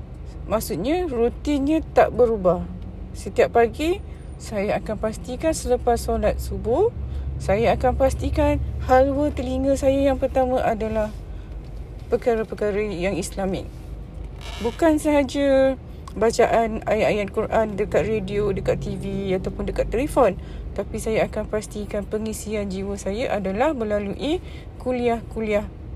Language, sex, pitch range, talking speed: Malay, female, 195-245 Hz, 105 wpm